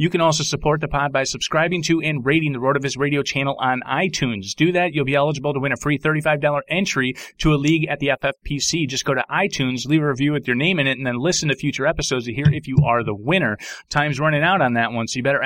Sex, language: male, English